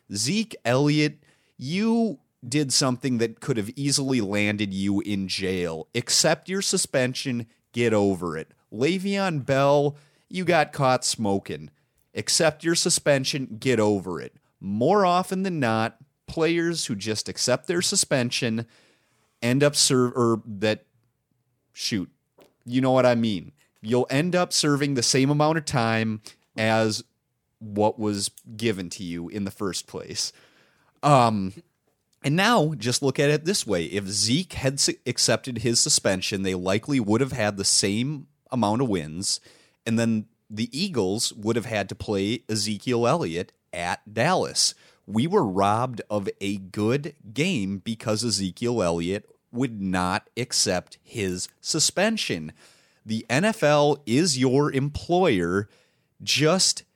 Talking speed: 140 wpm